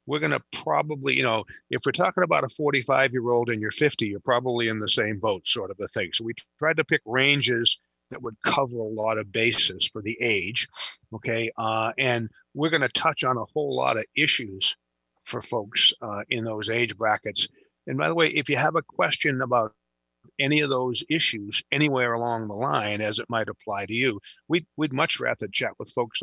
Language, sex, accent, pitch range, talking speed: English, male, American, 110-135 Hz, 210 wpm